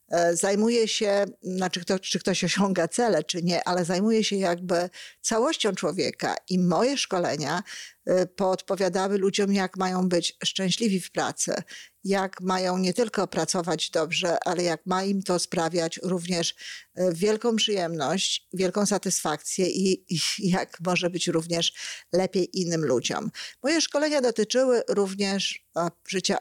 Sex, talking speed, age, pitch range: female, 130 wpm, 50-69, 170-205 Hz